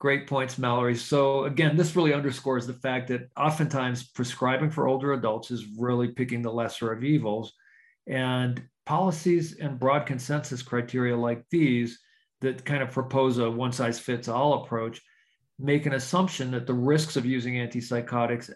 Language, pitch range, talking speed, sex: English, 120-145 Hz, 150 wpm, male